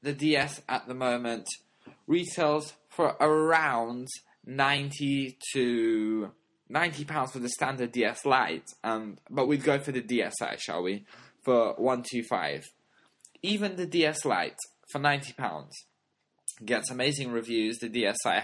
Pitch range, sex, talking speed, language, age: 115-150 Hz, male, 125 wpm, English, 10-29